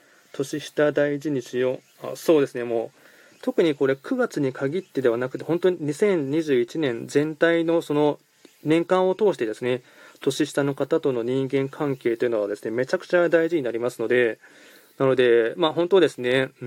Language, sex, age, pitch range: Japanese, male, 20-39, 125-150 Hz